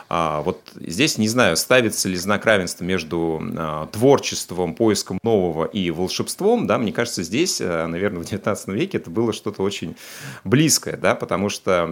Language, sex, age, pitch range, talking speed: Russian, male, 30-49, 85-105 Hz, 150 wpm